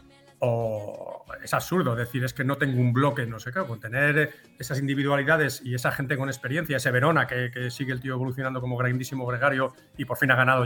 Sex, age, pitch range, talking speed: male, 40-59, 120-145 Hz, 225 wpm